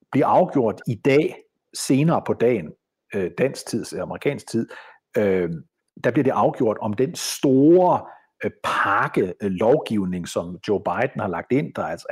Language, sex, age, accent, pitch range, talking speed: Danish, male, 50-69, native, 105-155 Hz, 140 wpm